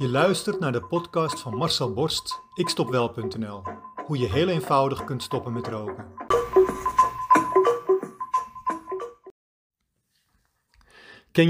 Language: Dutch